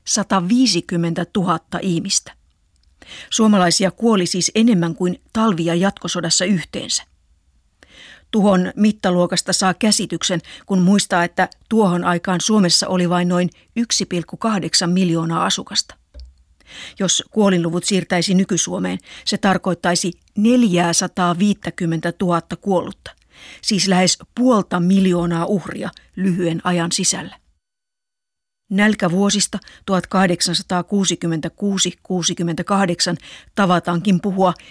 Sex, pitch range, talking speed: female, 170-205 Hz, 85 wpm